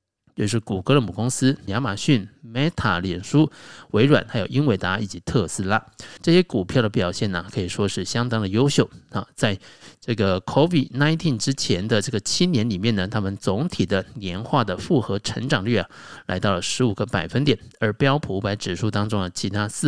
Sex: male